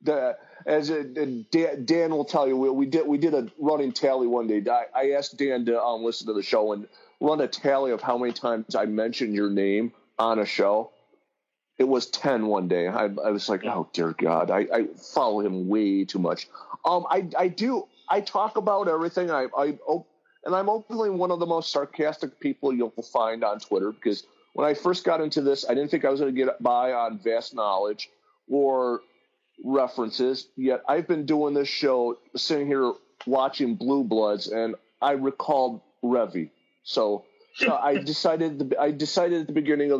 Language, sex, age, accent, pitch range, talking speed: English, male, 40-59, American, 120-150 Hz, 200 wpm